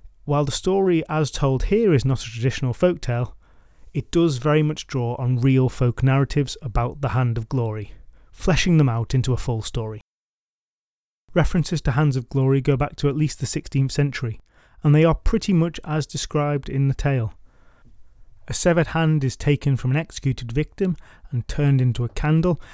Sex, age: male, 30-49